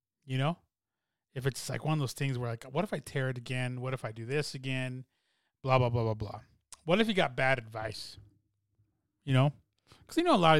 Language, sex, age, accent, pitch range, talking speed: English, male, 20-39, American, 115-150 Hz, 240 wpm